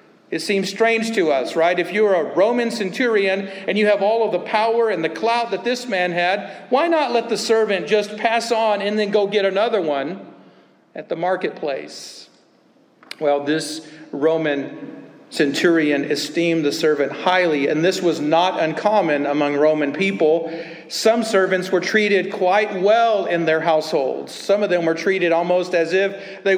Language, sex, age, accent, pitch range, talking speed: English, male, 40-59, American, 160-210 Hz, 170 wpm